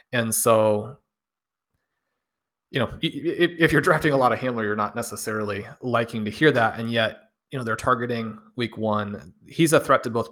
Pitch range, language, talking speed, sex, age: 115-145 Hz, English, 180 wpm, male, 30-49